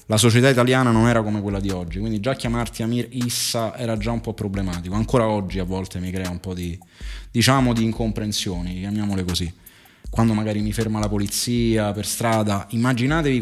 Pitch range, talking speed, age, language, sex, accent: 105-120 Hz, 190 wpm, 30-49, Italian, male, native